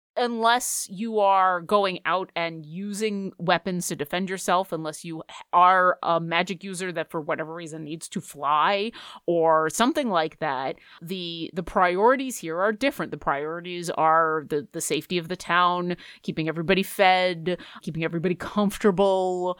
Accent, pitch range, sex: American, 170-225 Hz, female